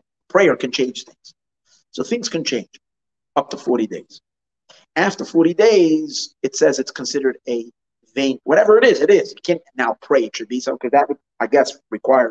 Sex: male